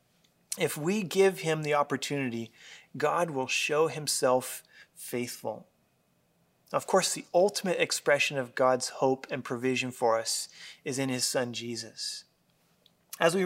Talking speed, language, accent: 135 wpm, English, American